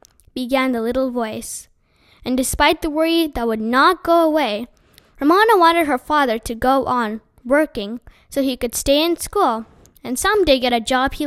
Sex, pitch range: female, 250-335 Hz